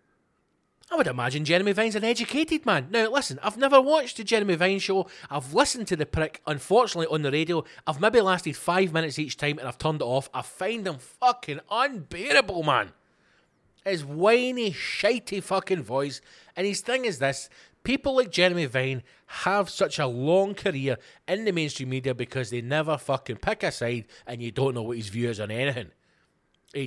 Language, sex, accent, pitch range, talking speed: English, male, British, 130-200 Hz, 190 wpm